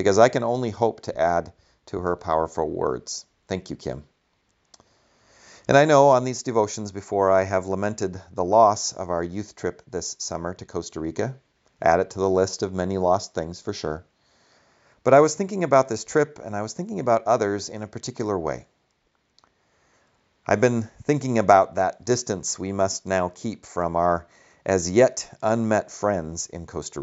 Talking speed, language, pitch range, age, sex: 175 wpm, English, 90-120 Hz, 40-59, male